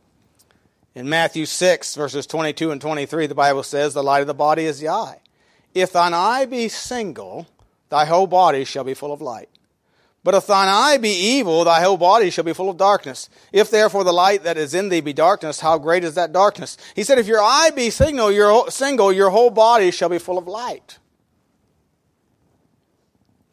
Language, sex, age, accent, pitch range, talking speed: English, male, 40-59, American, 165-240 Hz, 195 wpm